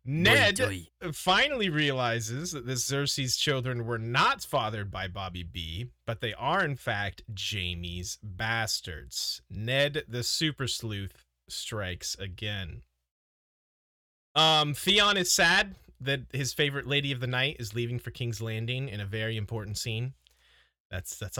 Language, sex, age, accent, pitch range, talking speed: English, male, 30-49, American, 105-170 Hz, 135 wpm